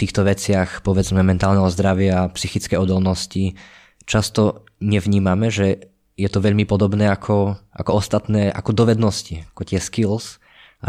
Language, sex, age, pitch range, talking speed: Slovak, male, 20-39, 90-100 Hz, 130 wpm